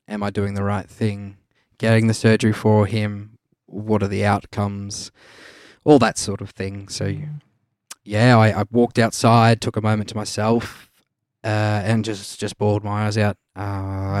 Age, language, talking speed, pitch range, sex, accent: 20-39, English, 170 wpm, 100-115 Hz, male, Australian